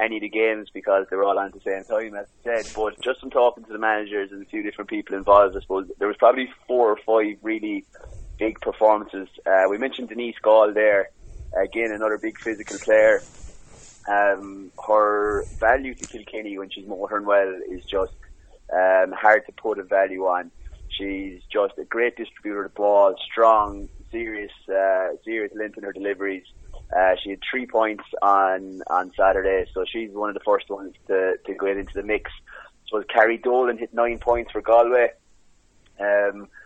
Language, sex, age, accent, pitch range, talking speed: English, male, 20-39, British, 100-115 Hz, 190 wpm